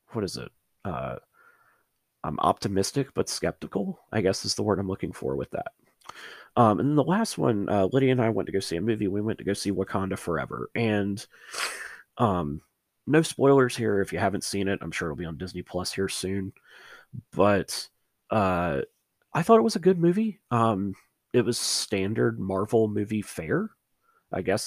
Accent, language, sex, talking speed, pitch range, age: American, English, male, 185 wpm, 95-120 Hz, 30-49